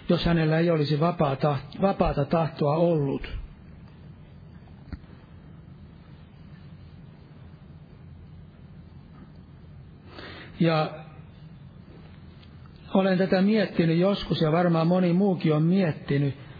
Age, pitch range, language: 60-79, 145-180 Hz, Finnish